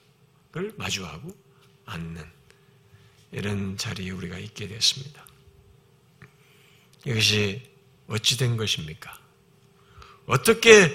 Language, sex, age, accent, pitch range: Korean, male, 50-69, native, 125-190 Hz